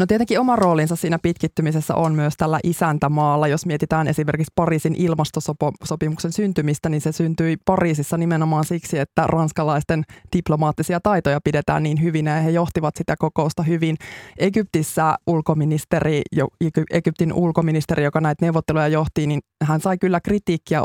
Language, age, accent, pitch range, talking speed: Finnish, 20-39, native, 155-170 Hz, 140 wpm